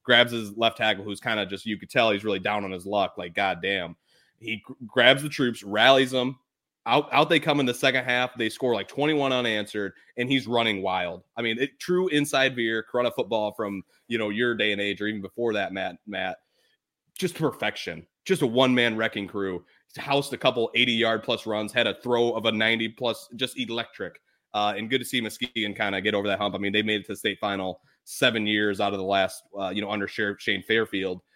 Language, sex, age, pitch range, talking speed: English, male, 20-39, 100-120 Hz, 225 wpm